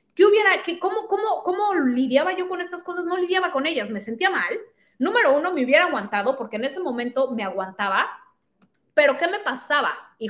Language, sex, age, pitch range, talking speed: Spanish, female, 30-49, 235-345 Hz, 200 wpm